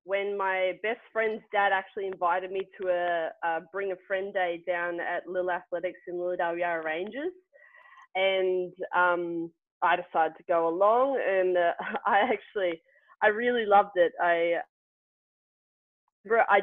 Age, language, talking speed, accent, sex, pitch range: 20-39, English, 140 wpm, Australian, female, 175-205 Hz